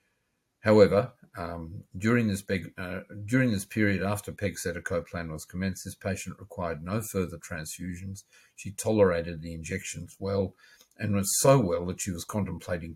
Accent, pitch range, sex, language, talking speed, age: Australian, 85-105 Hz, male, English, 155 wpm, 50-69